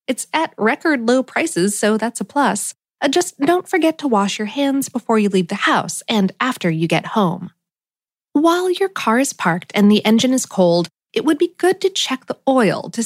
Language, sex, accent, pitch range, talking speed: English, female, American, 200-305 Hz, 205 wpm